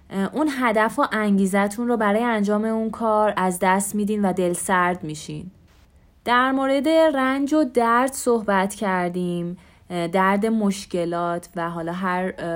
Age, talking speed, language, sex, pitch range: 20-39, 135 wpm, Persian, female, 180-225 Hz